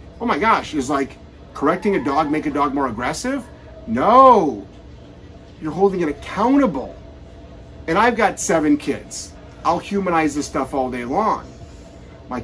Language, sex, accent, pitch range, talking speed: English, male, American, 135-225 Hz, 150 wpm